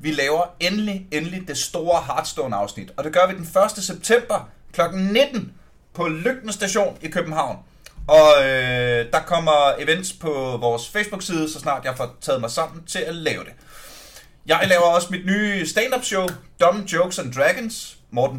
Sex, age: male, 30-49